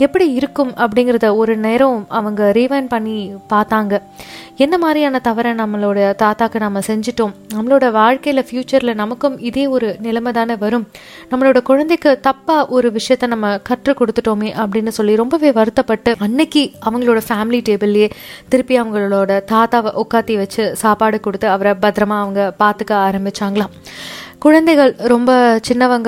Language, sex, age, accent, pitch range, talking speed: Tamil, female, 20-39, native, 215-255 Hz, 130 wpm